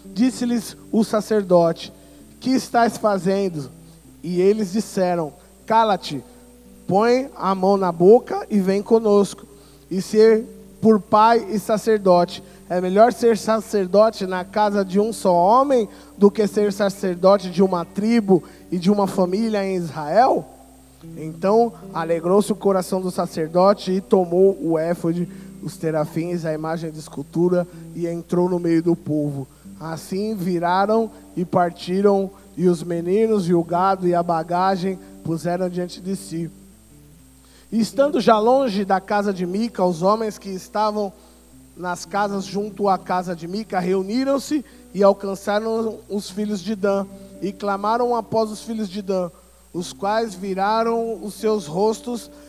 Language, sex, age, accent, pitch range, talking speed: Portuguese, male, 20-39, Brazilian, 175-215 Hz, 145 wpm